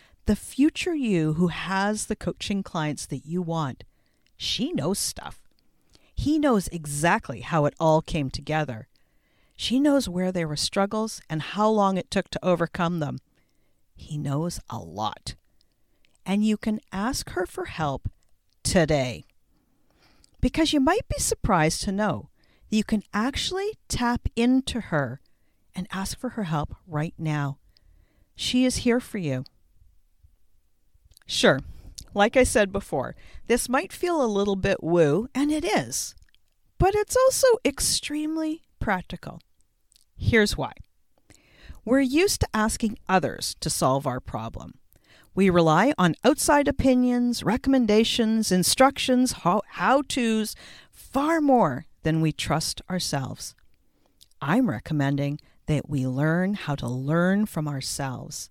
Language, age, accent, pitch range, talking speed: English, 50-69, American, 150-250 Hz, 135 wpm